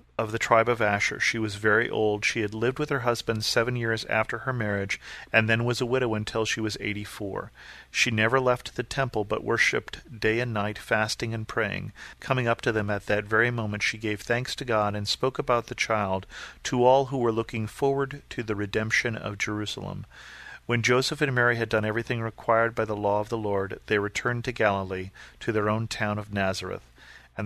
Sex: male